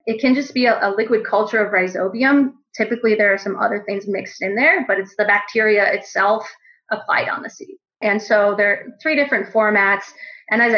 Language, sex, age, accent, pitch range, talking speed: English, female, 30-49, American, 200-240 Hz, 205 wpm